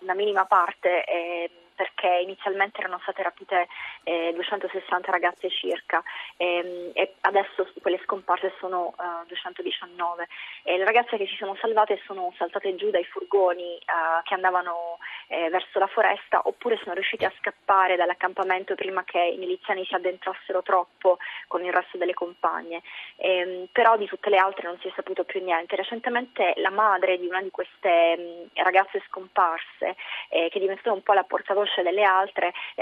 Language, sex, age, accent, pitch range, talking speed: Italian, female, 20-39, native, 180-200 Hz, 170 wpm